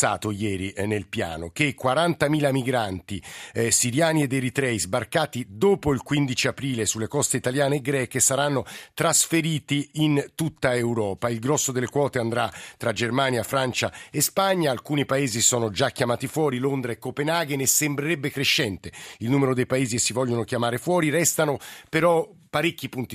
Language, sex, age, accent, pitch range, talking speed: Italian, male, 50-69, native, 115-145 Hz, 155 wpm